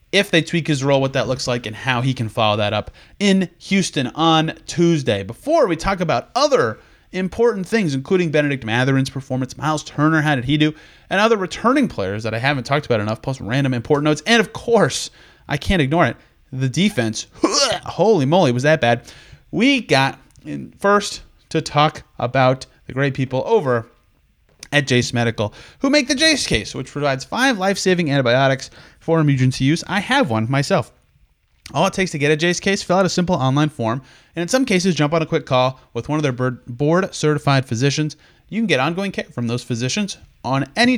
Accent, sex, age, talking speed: American, male, 30-49, 195 wpm